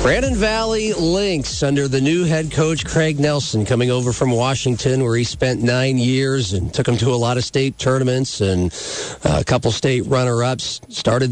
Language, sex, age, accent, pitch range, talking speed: English, male, 40-59, American, 110-130 Hz, 180 wpm